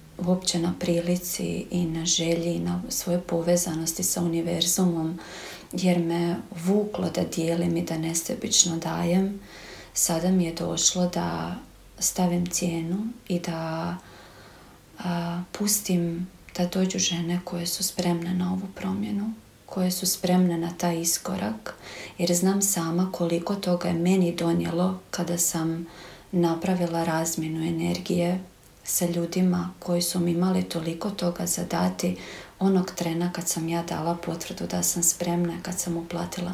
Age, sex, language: 40-59, female, Croatian